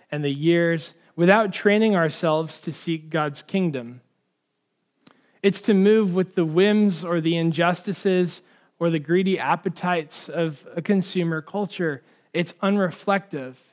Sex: male